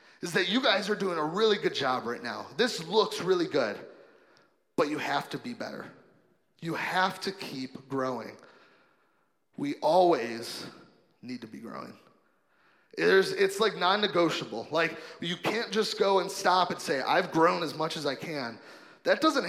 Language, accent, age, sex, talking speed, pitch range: English, American, 30-49, male, 165 wpm, 155-215 Hz